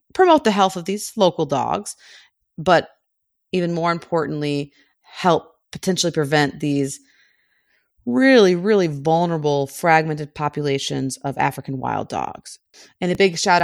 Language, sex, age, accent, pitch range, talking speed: English, female, 30-49, American, 140-180 Hz, 125 wpm